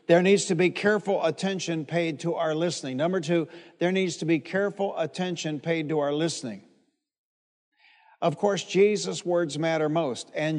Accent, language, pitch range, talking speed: American, English, 165-205 Hz, 165 wpm